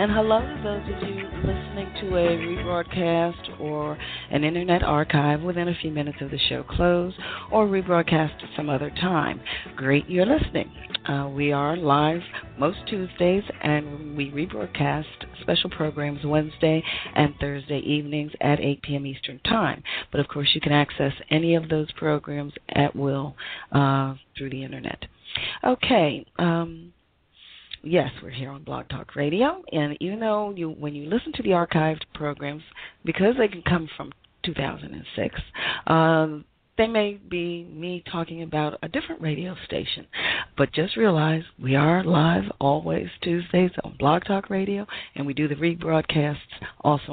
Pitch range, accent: 145-175 Hz, American